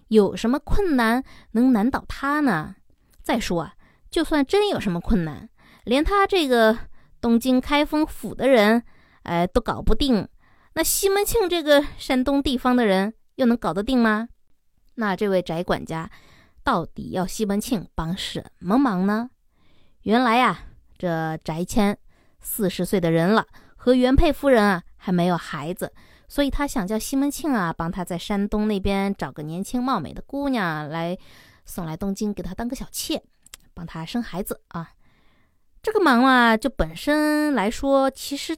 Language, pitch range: Chinese, 190-275 Hz